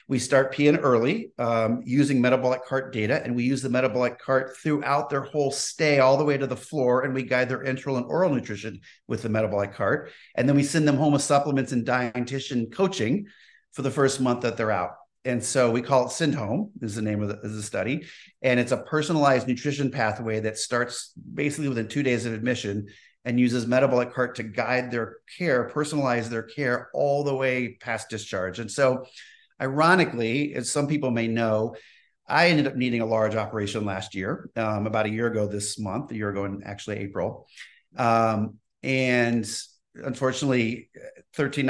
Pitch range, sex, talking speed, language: 110-135 Hz, male, 190 wpm, English